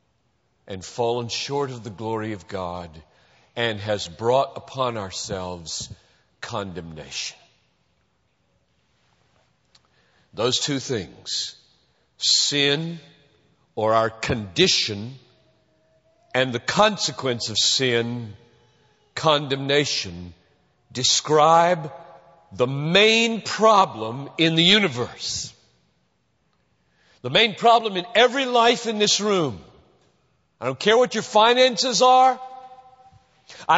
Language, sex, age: English, male, 50-69